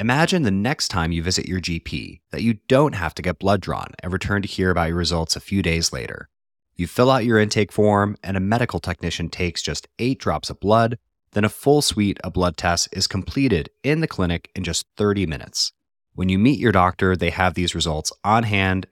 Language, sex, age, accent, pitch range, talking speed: English, male, 30-49, American, 85-110 Hz, 220 wpm